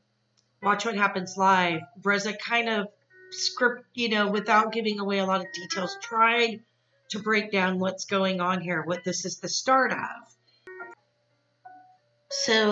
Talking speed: 150 wpm